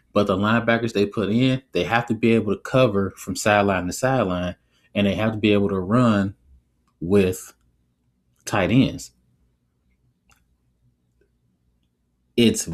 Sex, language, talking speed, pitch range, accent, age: male, English, 135 wpm, 85-110 Hz, American, 20-39